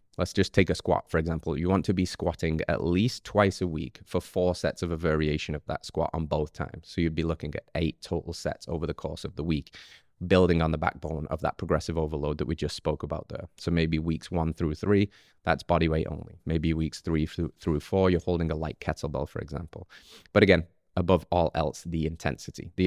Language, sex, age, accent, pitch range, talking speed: English, male, 20-39, British, 80-95 Hz, 230 wpm